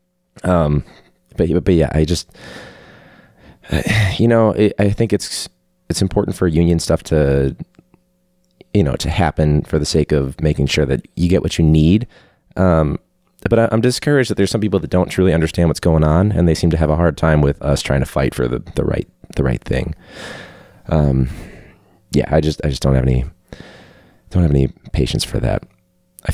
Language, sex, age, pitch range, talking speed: English, male, 30-49, 75-95 Hz, 195 wpm